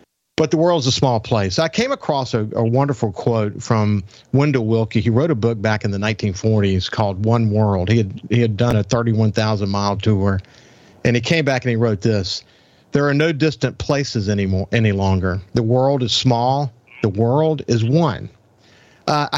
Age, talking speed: 50-69, 190 wpm